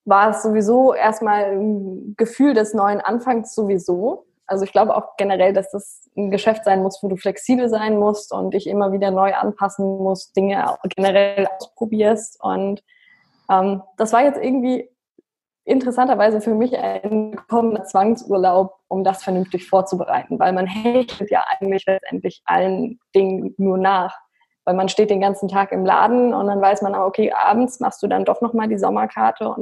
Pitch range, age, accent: 195-240 Hz, 20-39, German